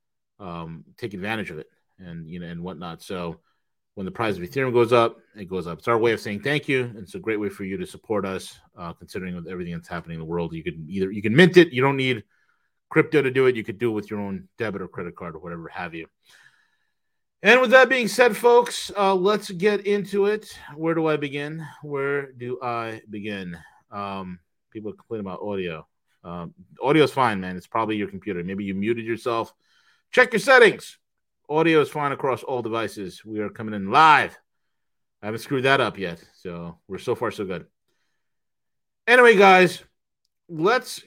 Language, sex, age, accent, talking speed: English, male, 30-49, American, 205 wpm